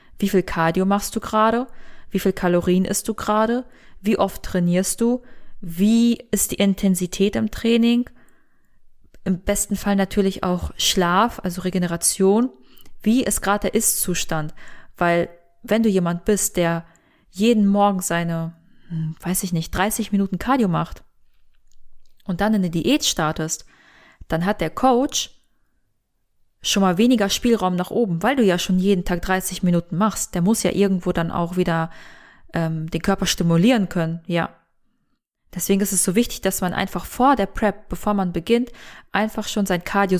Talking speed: 160 wpm